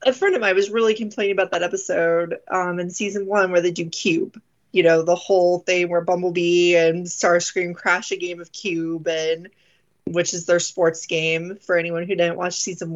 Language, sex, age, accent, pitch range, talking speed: English, female, 20-39, American, 175-225 Hz, 205 wpm